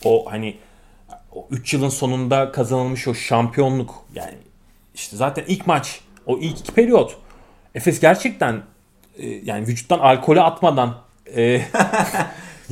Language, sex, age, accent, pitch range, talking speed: Turkish, male, 30-49, native, 115-175 Hz, 125 wpm